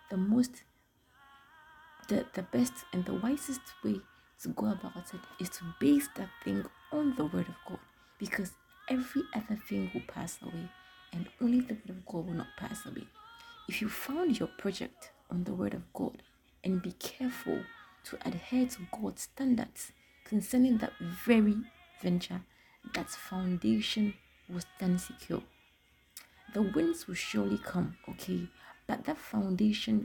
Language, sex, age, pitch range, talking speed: English, female, 30-49, 185-265 Hz, 150 wpm